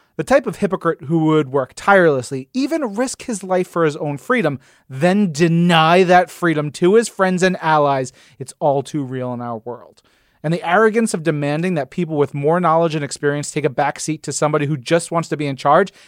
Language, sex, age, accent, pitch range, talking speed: English, male, 30-49, American, 145-190 Hz, 210 wpm